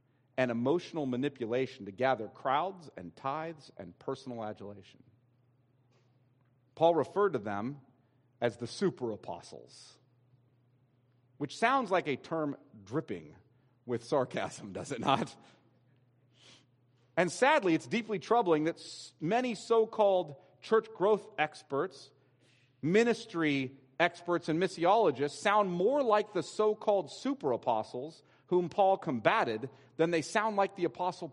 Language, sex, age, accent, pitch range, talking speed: English, male, 40-59, American, 130-190 Hz, 120 wpm